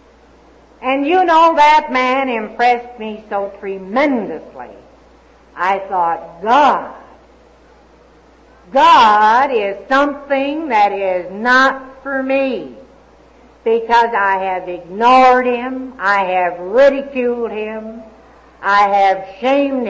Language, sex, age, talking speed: English, female, 60-79, 95 wpm